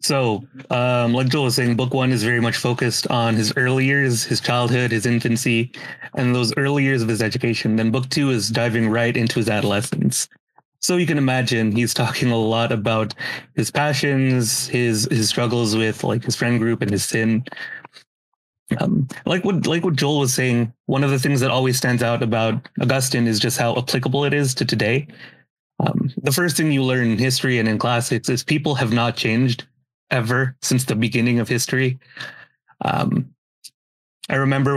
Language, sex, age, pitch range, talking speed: English, male, 30-49, 115-135 Hz, 190 wpm